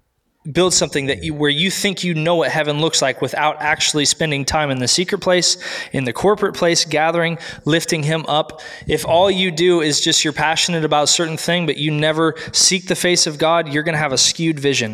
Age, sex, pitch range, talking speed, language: 20-39, male, 140-170 Hz, 220 wpm, English